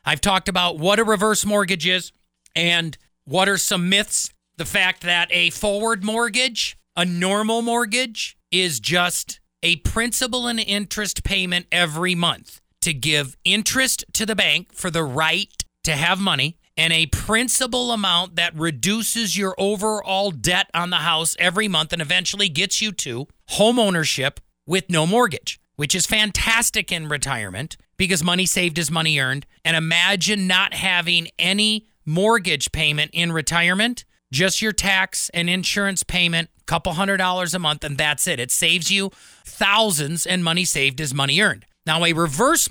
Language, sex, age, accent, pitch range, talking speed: English, male, 40-59, American, 165-205 Hz, 160 wpm